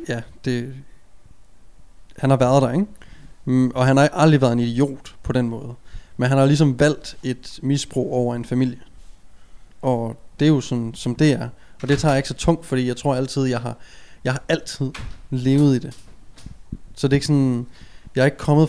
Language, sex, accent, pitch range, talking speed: Danish, male, native, 120-135 Hz, 200 wpm